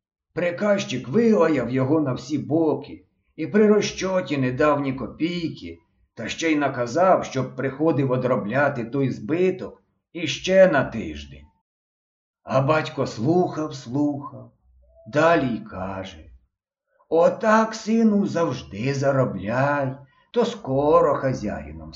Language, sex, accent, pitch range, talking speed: Ukrainian, male, native, 100-160 Hz, 105 wpm